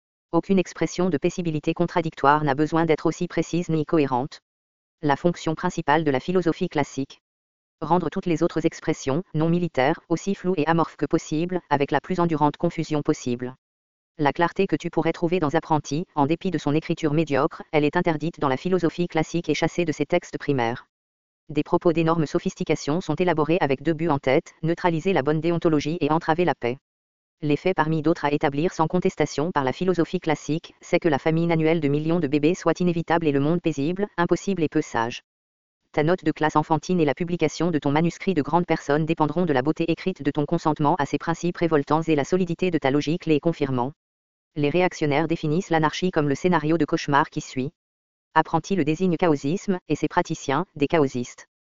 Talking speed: 195 wpm